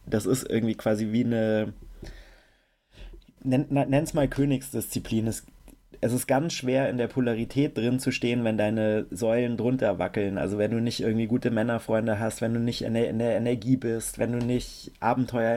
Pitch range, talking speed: 110-125 Hz, 170 wpm